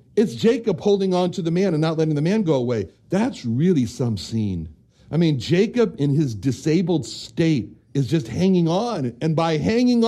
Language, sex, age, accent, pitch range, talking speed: English, male, 60-79, American, 120-190 Hz, 190 wpm